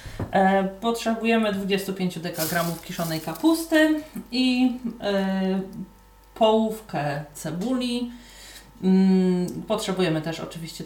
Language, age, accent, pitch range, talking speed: Polish, 30-49, native, 180-215 Hz, 60 wpm